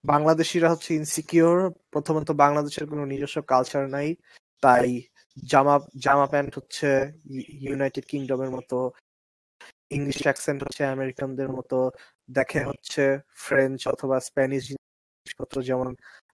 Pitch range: 130-145 Hz